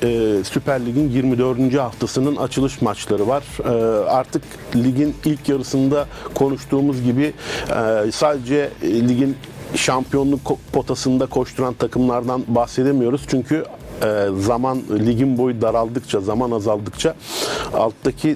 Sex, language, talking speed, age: male, Turkish, 90 wpm, 50-69